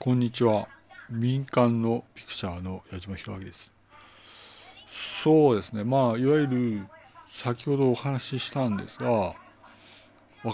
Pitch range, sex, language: 100-135 Hz, male, Japanese